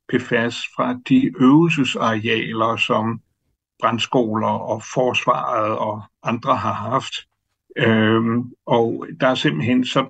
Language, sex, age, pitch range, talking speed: Danish, male, 60-79, 120-150 Hz, 105 wpm